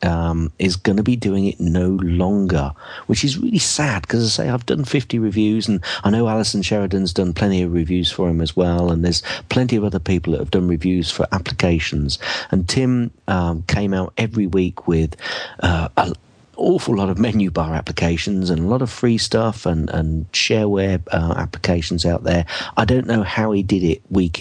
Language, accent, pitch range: English, British, 80-100 Hz